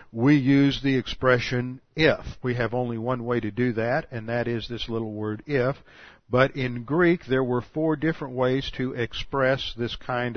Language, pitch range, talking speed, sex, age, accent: English, 115-135 Hz, 185 wpm, male, 50-69, American